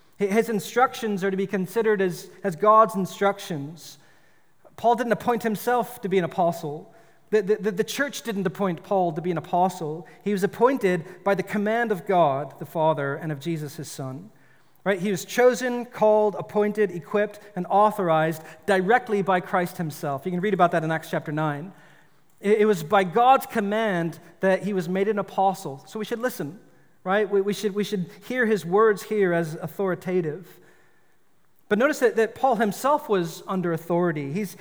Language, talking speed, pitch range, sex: English, 180 wpm, 170-215 Hz, male